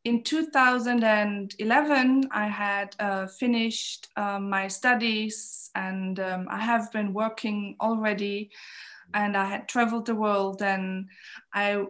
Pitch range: 200-240 Hz